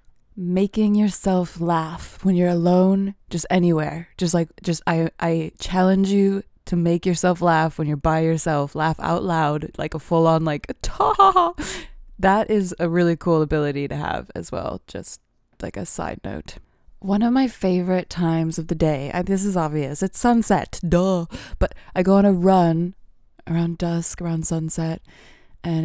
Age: 20-39